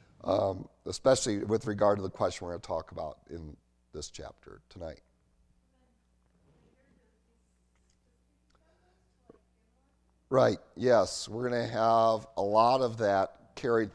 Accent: American